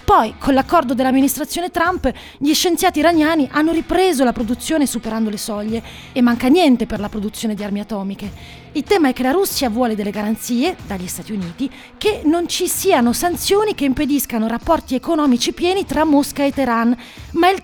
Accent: native